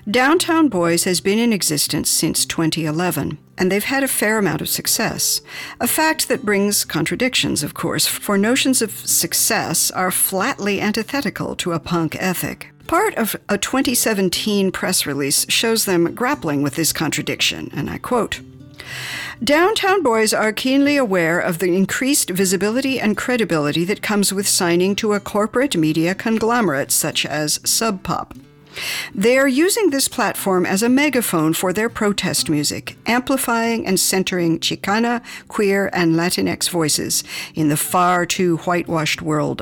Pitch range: 160-225 Hz